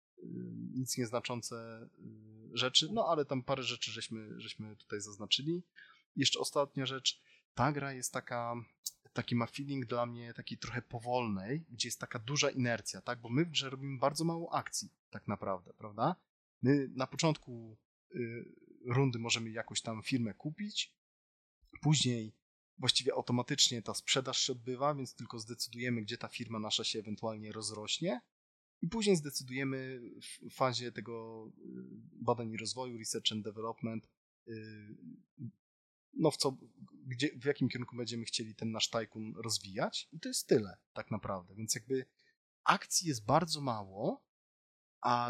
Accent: native